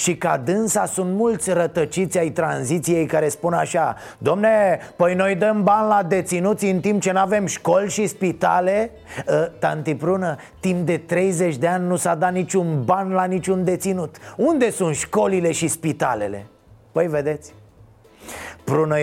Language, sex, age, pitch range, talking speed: Romanian, male, 30-49, 155-205 Hz, 160 wpm